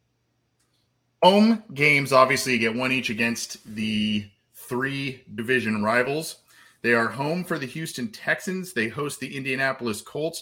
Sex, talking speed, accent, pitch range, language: male, 140 wpm, American, 105-125 Hz, English